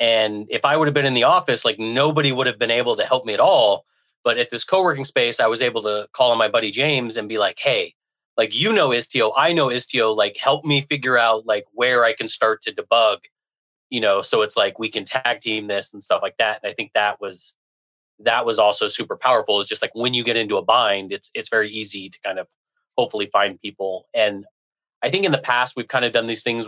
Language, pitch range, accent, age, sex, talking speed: English, 105-130 Hz, American, 30-49, male, 250 wpm